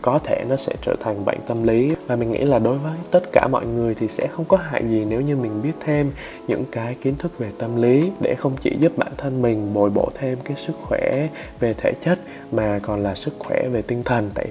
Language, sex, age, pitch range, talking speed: Vietnamese, male, 20-39, 110-135 Hz, 255 wpm